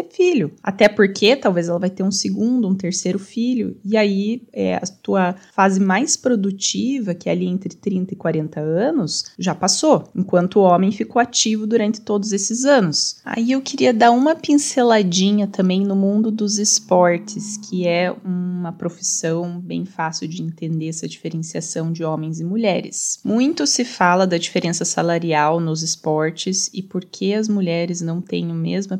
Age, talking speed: 20-39, 165 wpm